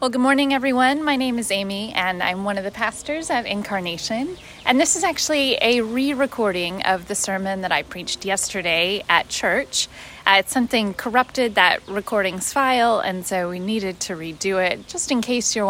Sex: female